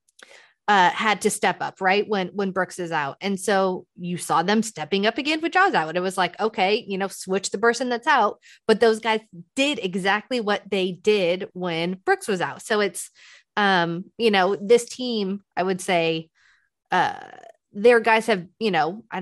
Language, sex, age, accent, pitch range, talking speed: English, female, 30-49, American, 170-215 Hz, 195 wpm